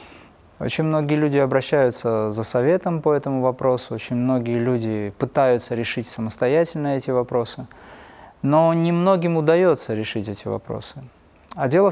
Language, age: Russian, 20-39